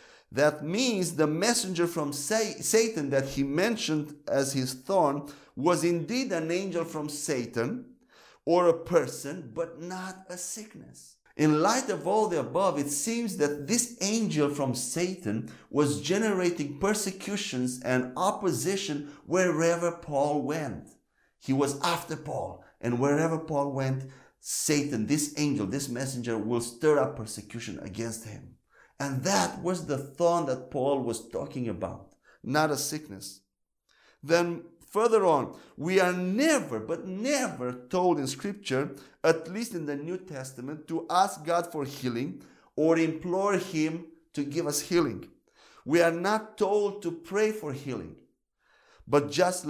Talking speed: 140 wpm